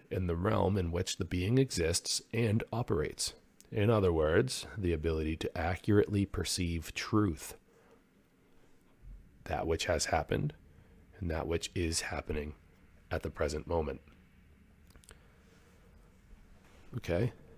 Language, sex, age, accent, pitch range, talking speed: English, male, 30-49, American, 80-95 Hz, 115 wpm